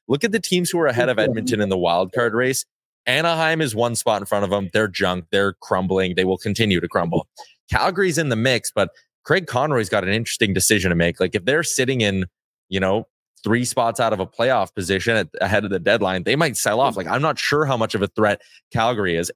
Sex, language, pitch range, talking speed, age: male, English, 100-135 Hz, 240 wpm, 20-39